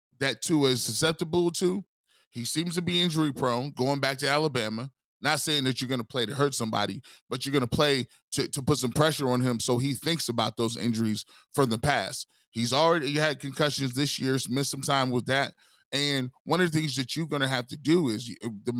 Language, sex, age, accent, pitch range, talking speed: English, male, 20-39, American, 120-150 Hz, 220 wpm